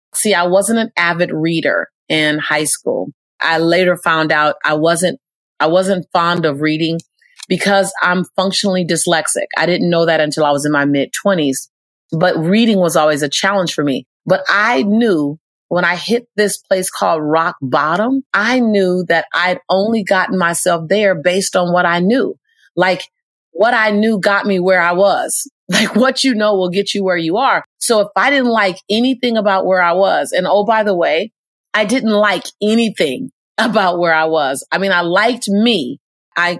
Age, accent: 30-49, American